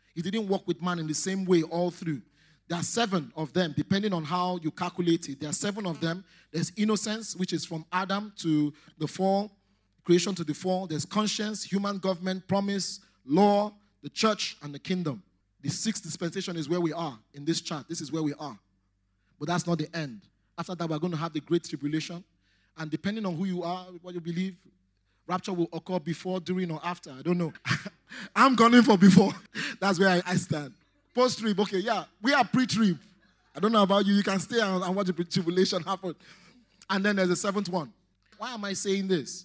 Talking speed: 210 wpm